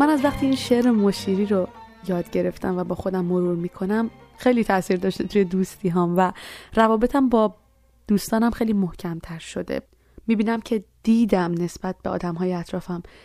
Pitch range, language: 185-225 Hz, Persian